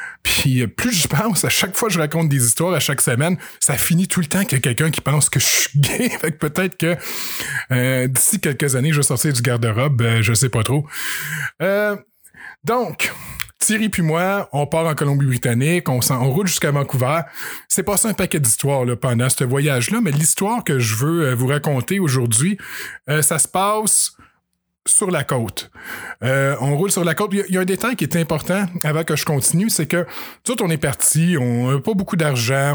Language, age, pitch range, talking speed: French, 20-39, 130-175 Hz, 215 wpm